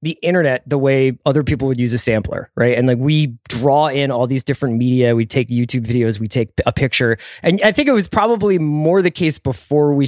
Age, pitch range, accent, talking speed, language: 20-39, 120-150 Hz, American, 230 wpm, English